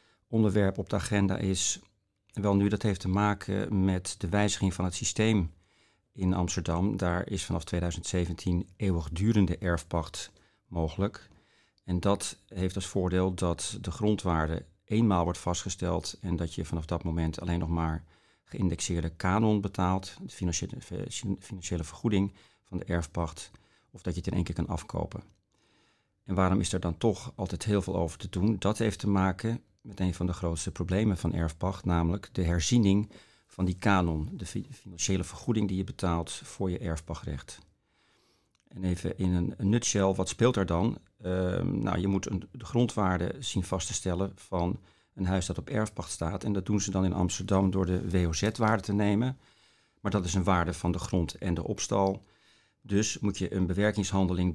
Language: Dutch